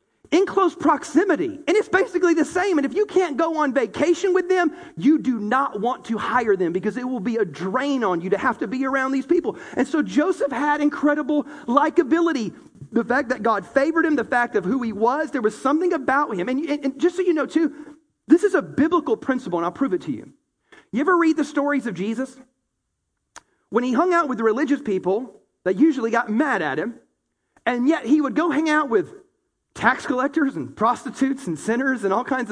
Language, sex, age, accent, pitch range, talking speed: English, male, 40-59, American, 250-340 Hz, 220 wpm